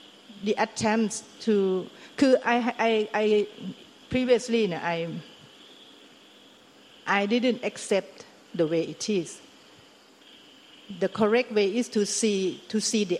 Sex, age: female, 60-79